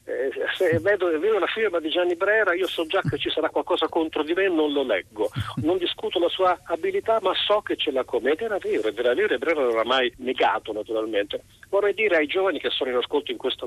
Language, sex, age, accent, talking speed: Italian, male, 40-59, native, 250 wpm